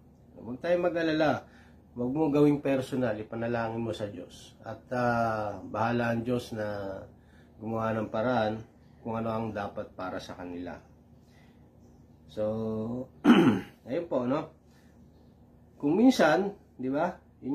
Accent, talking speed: Filipino, 115 wpm